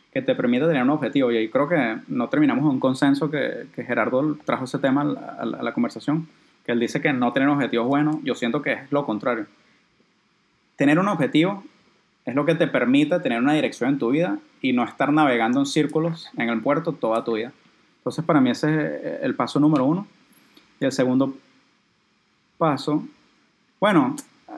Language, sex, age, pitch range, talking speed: Spanish, male, 20-39, 135-165 Hz, 200 wpm